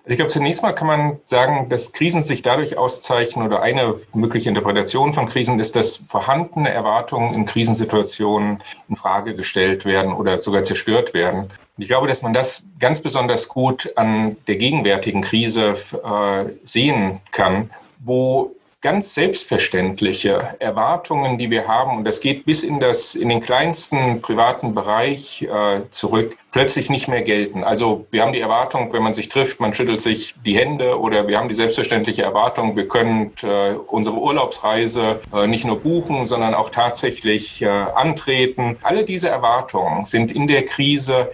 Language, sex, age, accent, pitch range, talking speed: German, male, 40-59, German, 110-145 Hz, 165 wpm